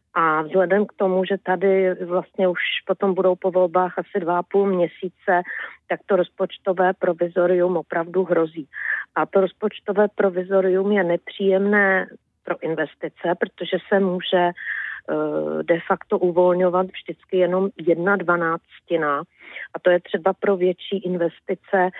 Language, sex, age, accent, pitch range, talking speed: Czech, female, 40-59, native, 165-185 Hz, 130 wpm